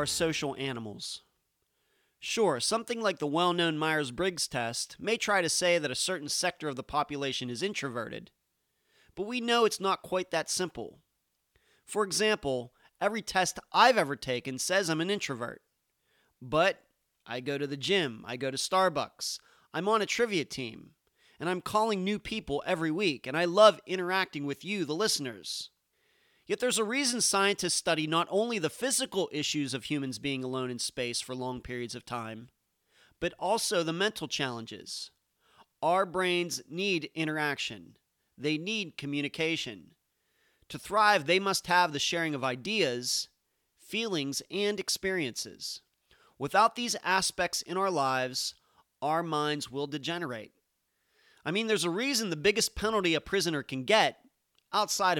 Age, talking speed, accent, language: 30-49, 155 wpm, American, English